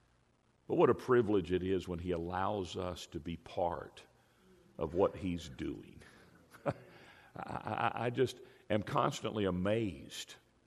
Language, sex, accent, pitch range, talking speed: English, male, American, 90-110 Hz, 135 wpm